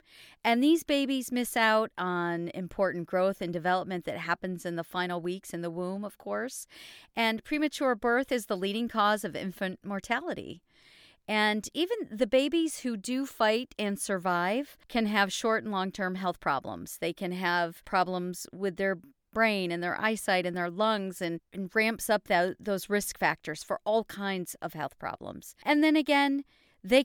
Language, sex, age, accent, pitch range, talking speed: English, female, 40-59, American, 185-230 Hz, 170 wpm